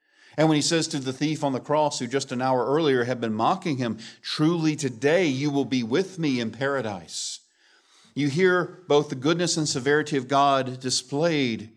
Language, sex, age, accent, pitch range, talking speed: English, male, 50-69, American, 125-160 Hz, 195 wpm